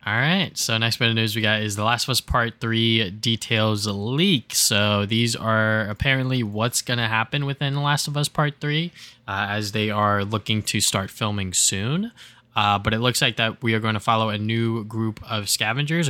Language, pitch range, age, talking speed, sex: English, 105-130 Hz, 10-29, 215 wpm, male